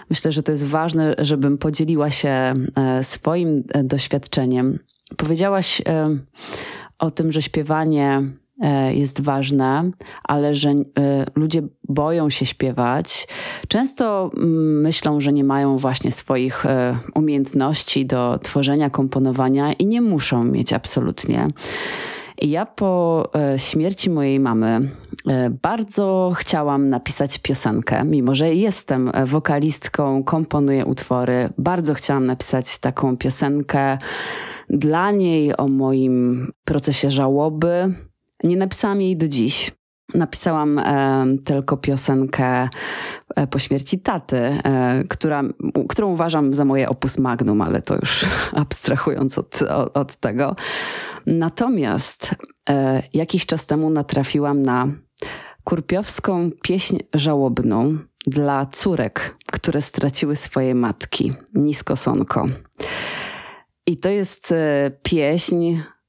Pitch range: 135-160 Hz